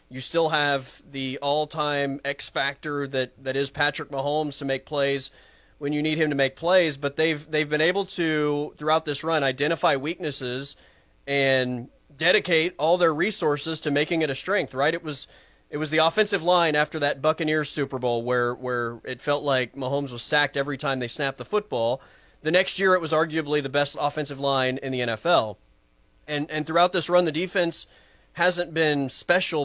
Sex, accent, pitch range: male, American, 130-155 Hz